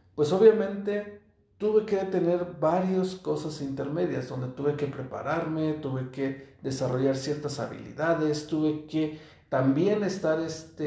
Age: 50-69